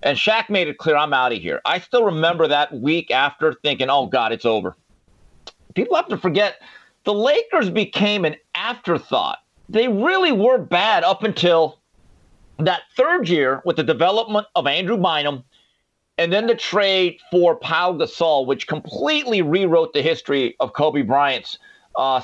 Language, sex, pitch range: English, male, 145-220 Hz